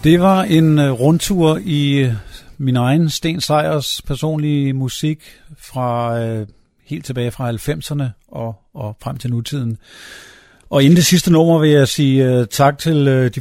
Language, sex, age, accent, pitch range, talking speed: Danish, male, 50-69, native, 115-145 Hz, 145 wpm